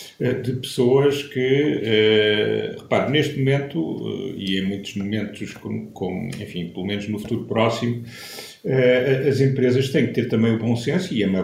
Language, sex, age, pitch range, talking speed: Portuguese, male, 50-69, 115-135 Hz, 145 wpm